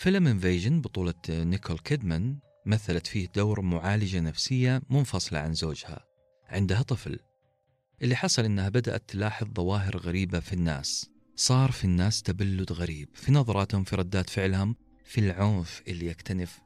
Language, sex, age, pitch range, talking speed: Arabic, male, 40-59, 90-120 Hz, 135 wpm